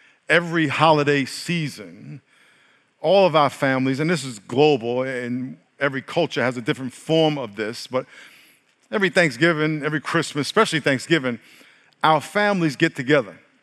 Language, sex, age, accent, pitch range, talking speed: English, male, 50-69, American, 135-170 Hz, 135 wpm